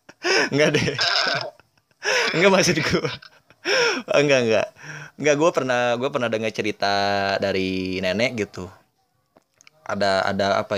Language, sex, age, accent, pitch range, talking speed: English, male, 20-39, Indonesian, 100-120 Hz, 105 wpm